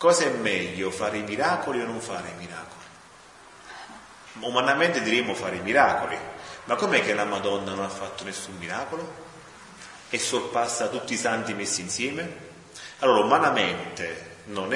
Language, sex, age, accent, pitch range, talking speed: Italian, male, 30-49, native, 95-125 Hz, 145 wpm